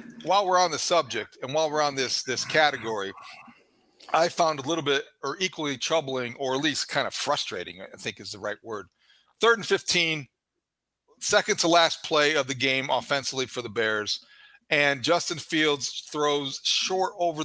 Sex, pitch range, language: male, 135-175 Hz, English